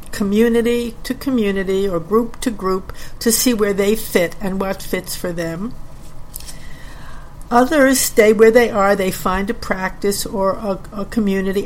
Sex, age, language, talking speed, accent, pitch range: female, 60-79, English, 155 wpm, American, 180-220 Hz